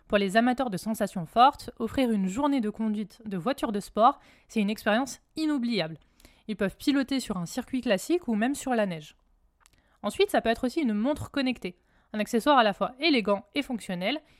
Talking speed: 195 wpm